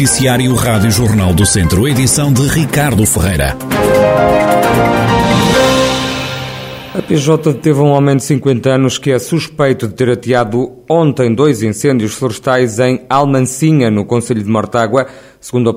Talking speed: 130 wpm